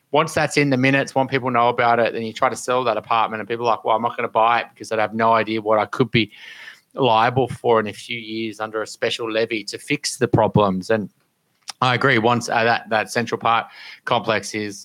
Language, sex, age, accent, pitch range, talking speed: English, male, 30-49, Australian, 105-130 Hz, 250 wpm